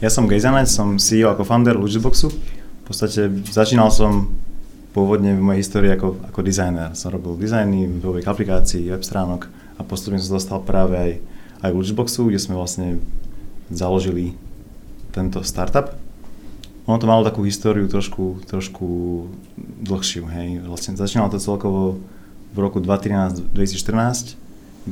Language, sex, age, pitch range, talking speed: Czech, male, 30-49, 95-105 Hz, 130 wpm